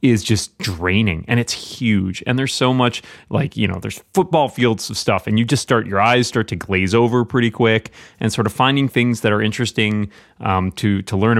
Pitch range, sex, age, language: 100-115 Hz, male, 30-49, English